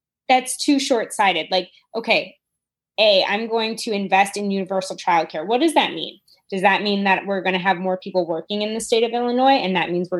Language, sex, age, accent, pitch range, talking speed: English, female, 20-39, American, 175-210 Hz, 220 wpm